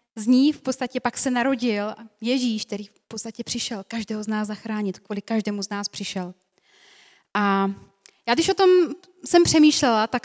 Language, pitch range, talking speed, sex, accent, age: Czech, 220-275 Hz, 170 wpm, female, native, 30-49